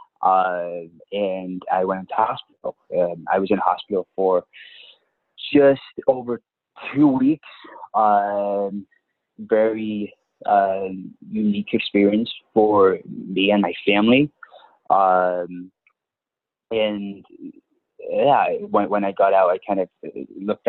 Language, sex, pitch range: English, male, 95-115 Hz